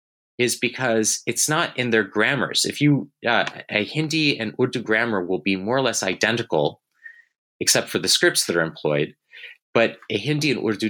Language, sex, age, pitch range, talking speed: English, male, 30-49, 100-125 Hz, 180 wpm